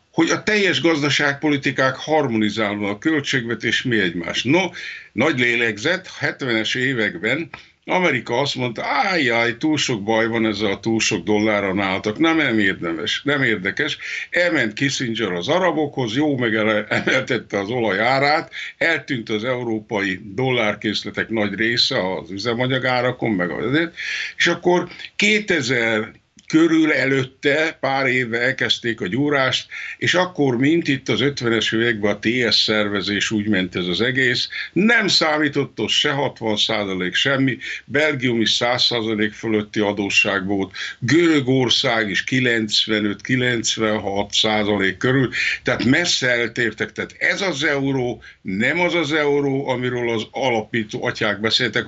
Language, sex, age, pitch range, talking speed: Hungarian, male, 60-79, 110-140 Hz, 130 wpm